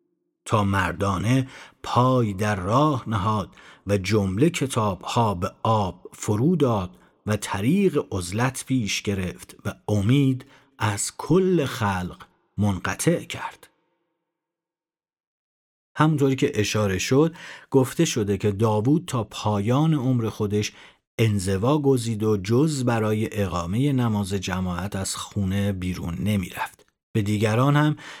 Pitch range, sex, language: 100-135 Hz, male, Persian